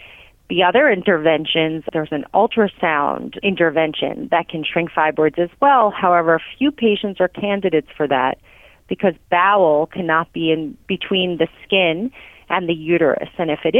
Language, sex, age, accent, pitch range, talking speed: English, female, 30-49, American, 160-215 Hz, 150 wpm